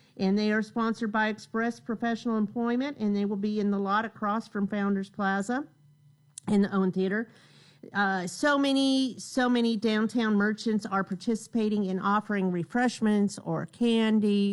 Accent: American